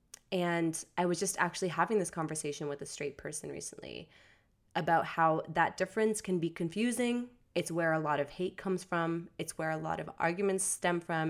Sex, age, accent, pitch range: female, 20-39, American, 155-185 Hz